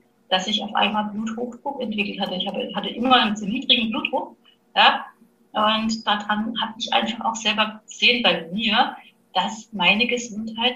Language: German